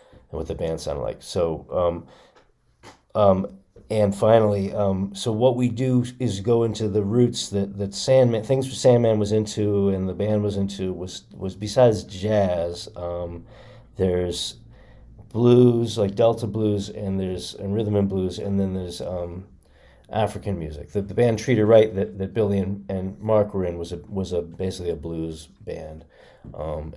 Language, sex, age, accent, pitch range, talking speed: English, male, 40-59, American, 85-105 Hz, 175 wpm